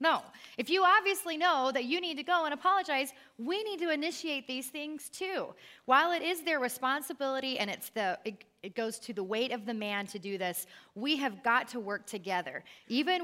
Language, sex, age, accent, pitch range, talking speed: English, female, 30-49, American, 205-275 Hz, 210 wpm